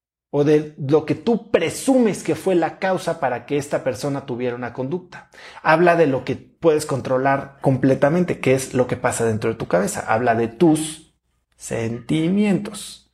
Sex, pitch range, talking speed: male, 135-190 Hz, 170 wpm